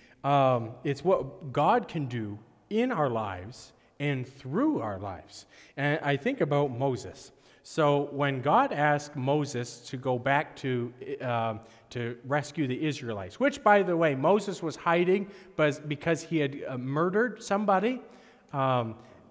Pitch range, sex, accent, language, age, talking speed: 130-185 Hz, male, American, English, 40-59, 140 wpm